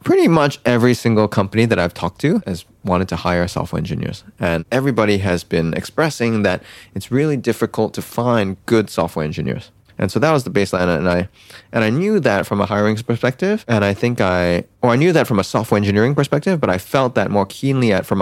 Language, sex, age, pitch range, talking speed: English, male, 20-39, 90-115 Hz, 215 wpm